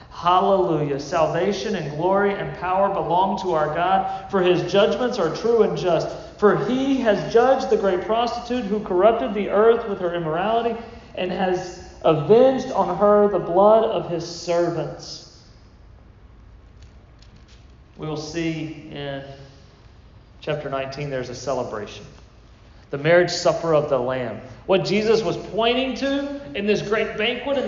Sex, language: male, English